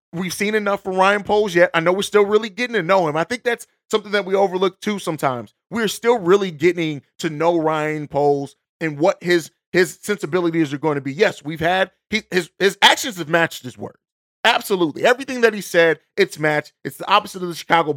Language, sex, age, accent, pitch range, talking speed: English, male, 30-49, American, 150-190 Hz, 220 wpm